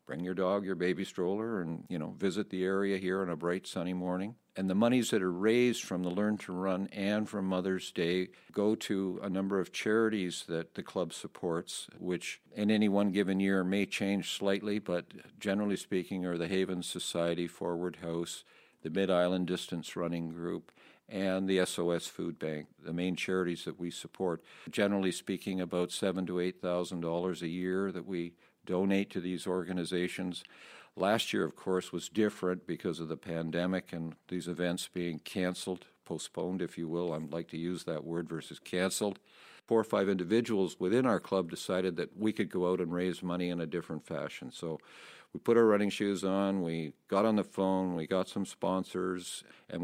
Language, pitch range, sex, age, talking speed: English, 90-95 Hz, male, 50-69, 190 wpm